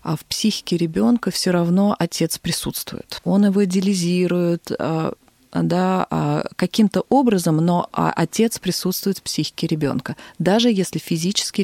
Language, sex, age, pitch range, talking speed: Russian, female, 20-39, 170-210 Hz, 120 wpm